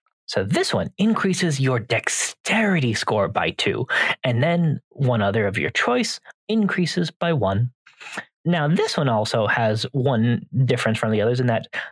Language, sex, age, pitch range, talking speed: English, male, 30-49, 125-185 Hz, 155 wpm